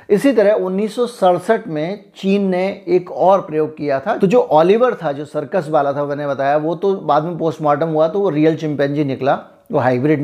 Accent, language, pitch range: native, Hindi, 150-185 Hz